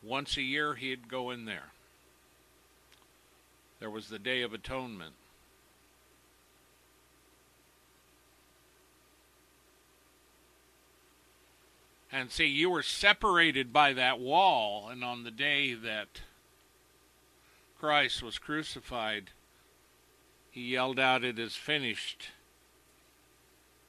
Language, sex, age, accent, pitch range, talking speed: English, male, 60-79, American, 95-130 Hz, 90 wpm